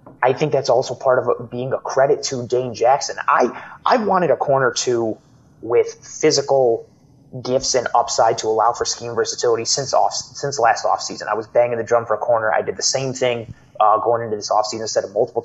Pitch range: 120-155 Hz